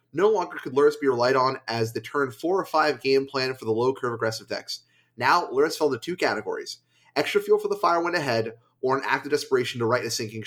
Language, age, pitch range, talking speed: English, 30-49, 130-205 Hz, 235 wpm